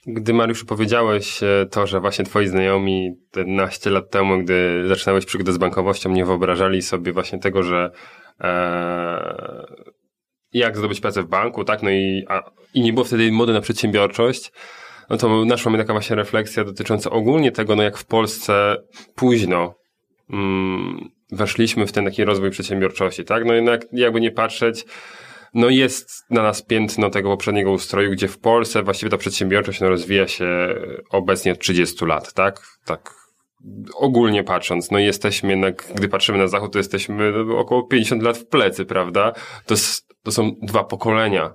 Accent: native